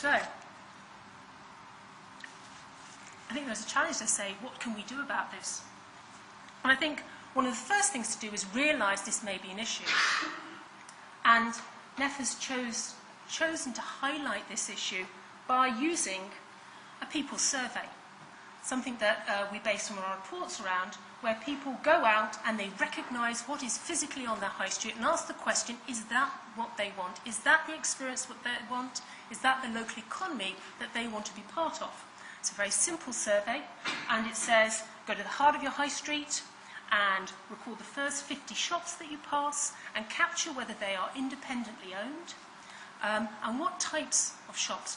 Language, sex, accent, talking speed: English, female, British, 175 wpm